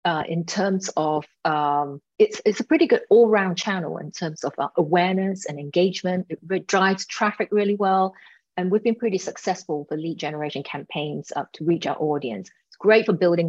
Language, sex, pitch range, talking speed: English, female, 160-200 Hz, 190 wpm